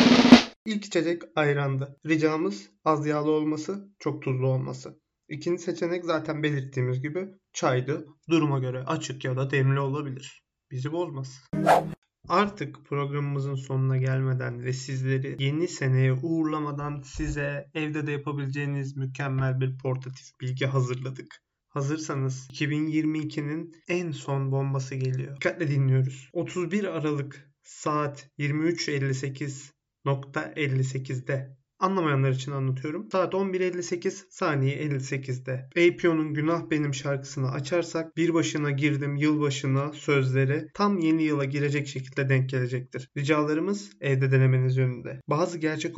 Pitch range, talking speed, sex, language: 130-155 Hz, 115 wpm, male, Turkish